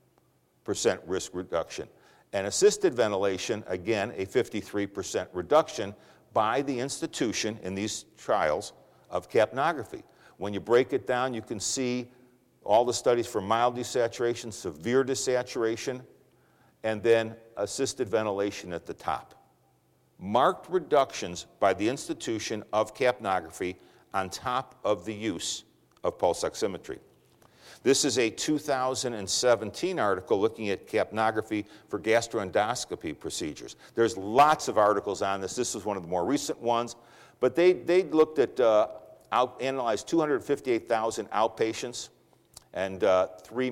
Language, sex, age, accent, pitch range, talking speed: English, male, 60-79, American, 105-130 Hz, 130 wpm